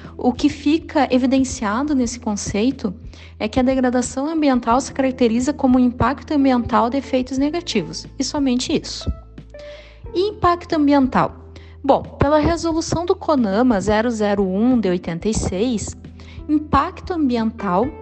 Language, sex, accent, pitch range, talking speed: Portuguese, female, Brazilian, 215-275 Hz, 120 wpm